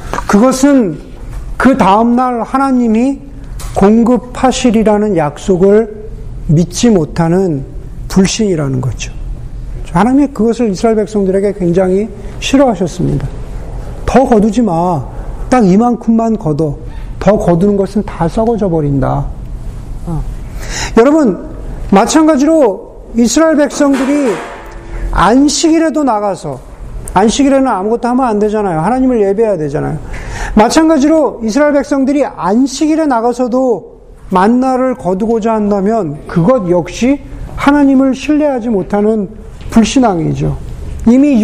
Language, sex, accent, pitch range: Korean, male, native, 170-255 Hz